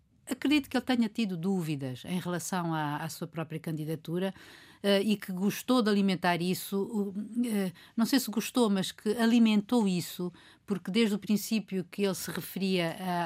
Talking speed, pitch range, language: 170 wpm, 165-200 Hz, Portuguese